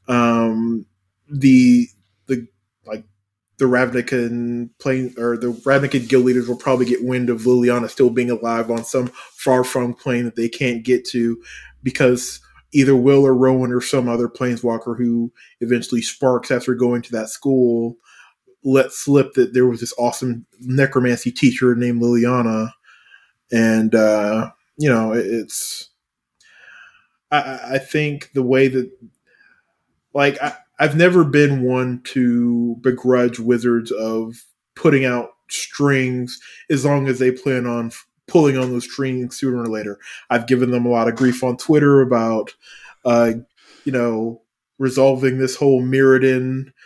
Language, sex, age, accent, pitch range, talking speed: English, male, 20-39, American, 120-130 Hz, 145 wpm